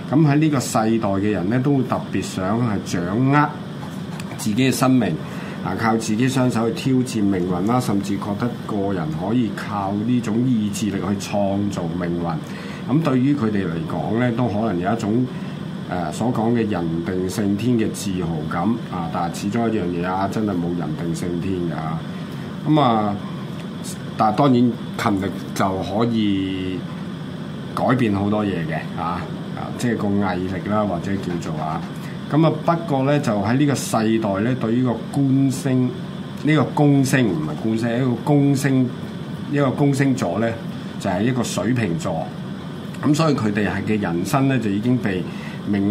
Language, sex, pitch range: Chinese, male, 100-135 Hz